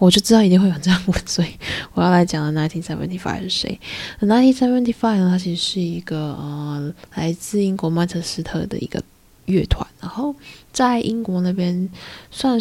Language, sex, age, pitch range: Chinese, female, 20-39, 170-200 Hz